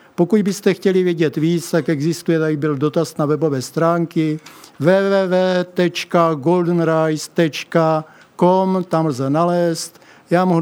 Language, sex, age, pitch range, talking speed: Czech, male, 50-69, 155-170 Hz, 105 wpm